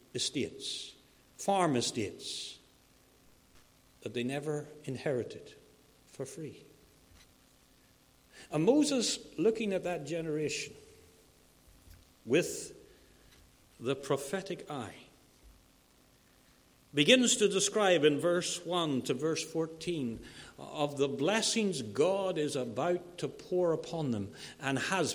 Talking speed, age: 95 wpm, 60-79